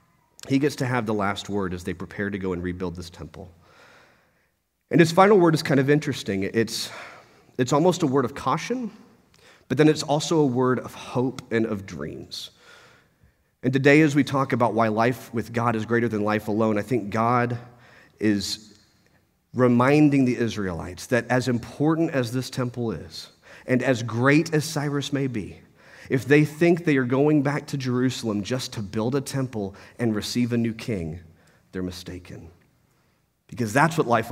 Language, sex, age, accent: English, male, 40-59, American